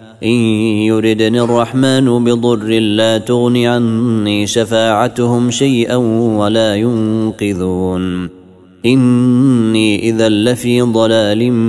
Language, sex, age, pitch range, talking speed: Arabic, male, 30-49, 100-120 Hz, 75 wpm